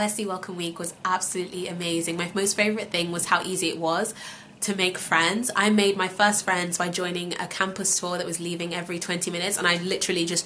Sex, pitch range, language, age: female, 180-205 Hz, English, 20-39